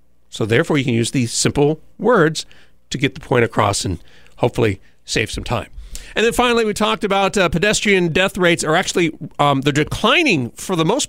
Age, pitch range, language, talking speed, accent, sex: 40-59, 125-165 Hz, English, 195 wpm, American, male